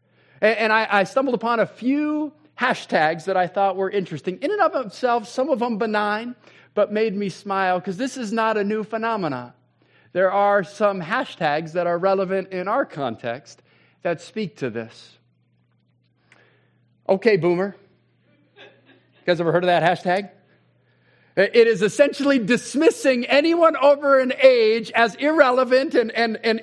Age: 40-59